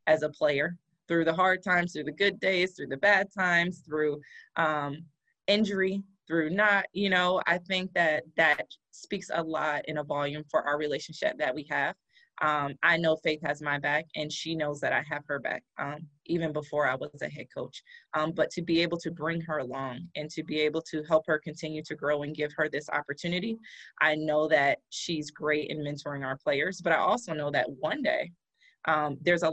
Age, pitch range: 20-39, 145-170 Hz